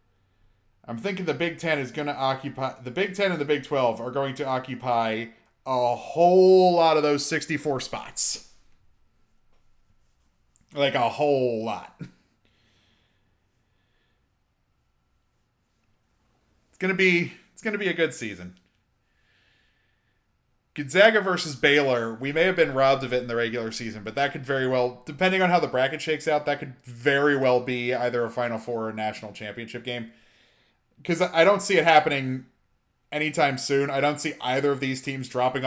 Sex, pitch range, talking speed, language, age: male, 115-150 Hz, 160 wpm, English, 30-49